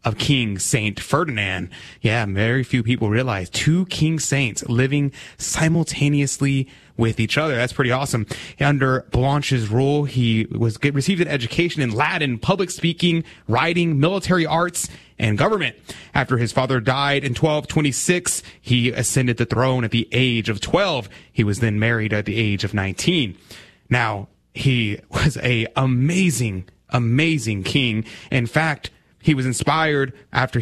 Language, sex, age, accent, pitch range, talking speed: English, male, 30-49, American, 115-155 Hz, 145 wpm